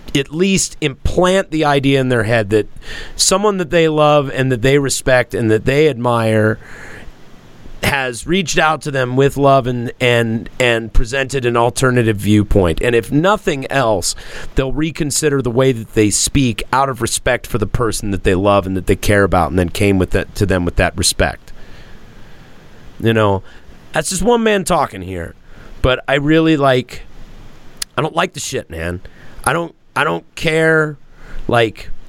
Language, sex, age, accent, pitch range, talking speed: English, male, 30-49, American, 110-145 Hz, 175 wpm